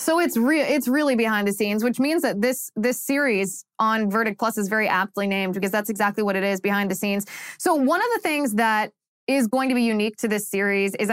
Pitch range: 200-250 Hz